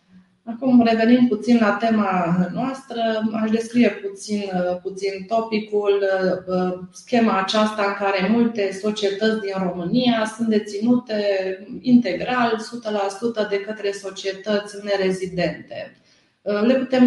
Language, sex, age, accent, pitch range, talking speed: Romanian, female, 30-49, native, 185-220 Hz, 100 wpm